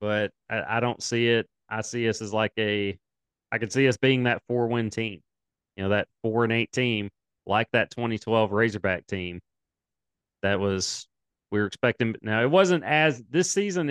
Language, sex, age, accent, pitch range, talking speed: English, male, 30-49, American, 105-125 Hz, 175 wpm